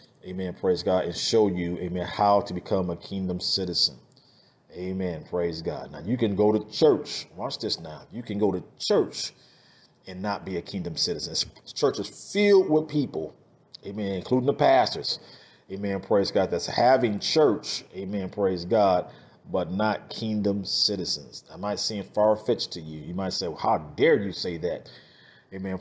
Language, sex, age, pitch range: English, male, 40-59, 90-120 Hz